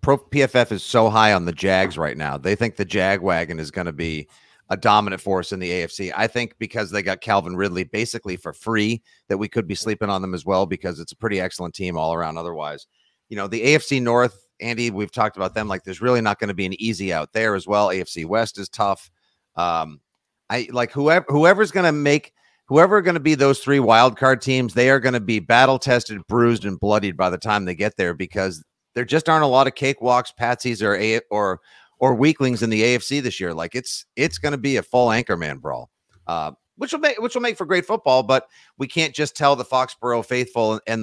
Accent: American